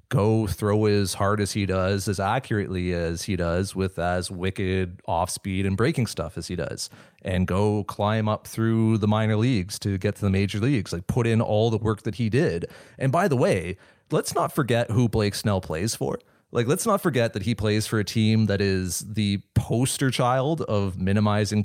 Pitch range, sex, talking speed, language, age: 100-120 Hz, male, 210 wpm, English, 30-49